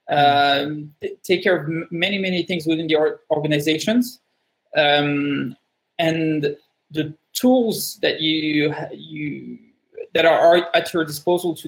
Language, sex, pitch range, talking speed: English, male, 150-180 Hz, 120 wpm